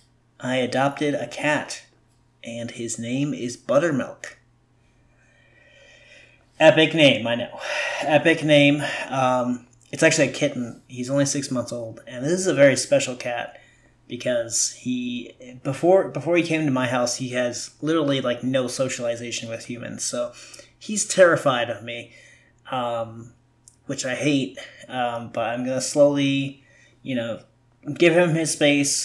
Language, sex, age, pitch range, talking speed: English, male, 30-49, 120-140 Hz, 145 wpm